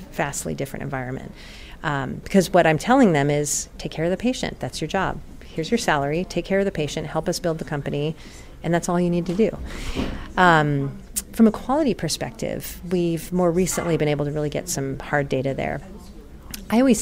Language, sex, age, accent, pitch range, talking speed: English, female, 40-59, American, 150-190 Hz, 200 wpm